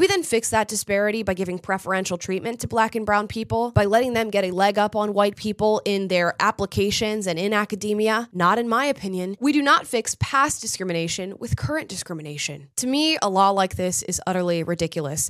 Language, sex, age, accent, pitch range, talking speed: English, female, 10-29, American, 190-245 Hz, 205 wpm